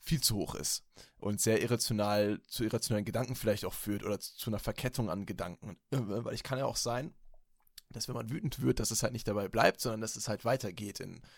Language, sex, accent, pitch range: German, male, German, 110-135 Hz